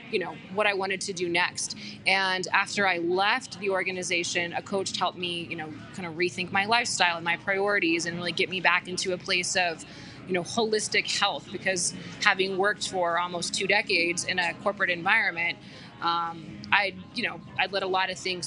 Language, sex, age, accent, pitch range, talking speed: English, female, 20-39, American, 175-205 Hz, 200 wpm